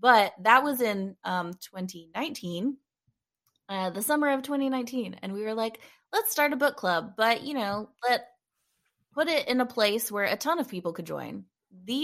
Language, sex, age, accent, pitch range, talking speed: English, female, 20-39, American, 180-245 Hz, 185 wpm